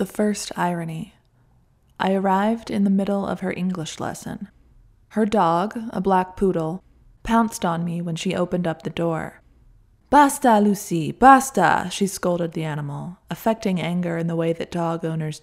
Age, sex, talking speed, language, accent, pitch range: 20-39, female, 160 wpm, English, American, 170-210 Hz